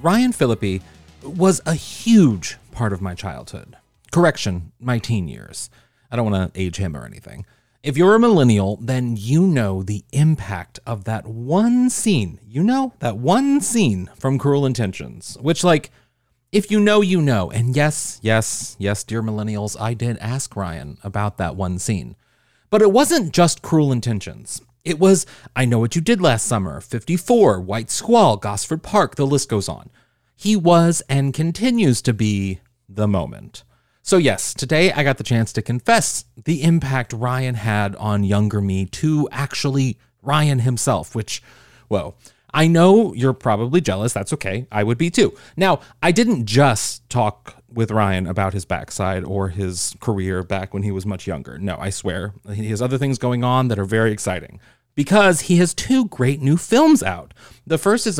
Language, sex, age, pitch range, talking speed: English, male, 30-49, 105-155 Hz, 175 wpm